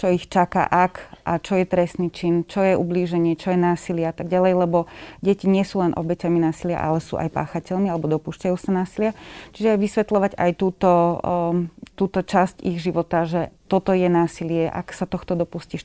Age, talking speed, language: 30-49, 190 wpm, Slovak